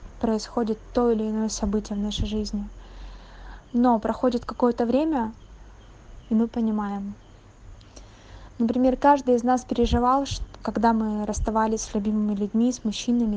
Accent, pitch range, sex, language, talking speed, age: native, 210-245 Hz, female, Russian, 125 wpm, 20-39